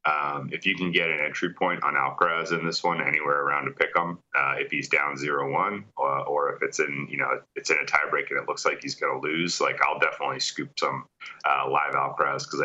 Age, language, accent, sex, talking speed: 30-49, English, American, male, 245 wpm